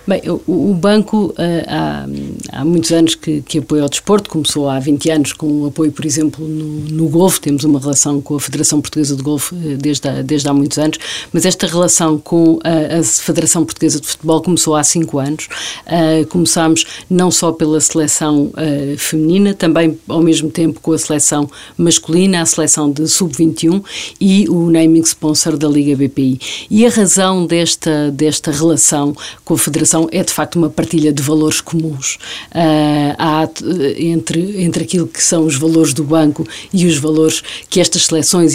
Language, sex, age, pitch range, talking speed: Portuguese, female, 50-69, 150-165 Hz, 165 wpm